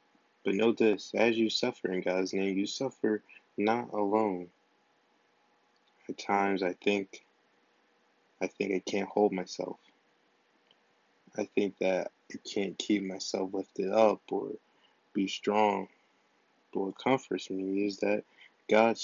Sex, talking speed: male, 130 wpm